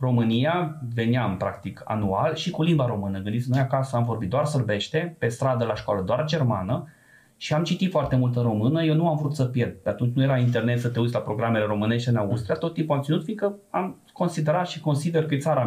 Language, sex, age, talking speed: Romanian, male, 20-39, 220 wpm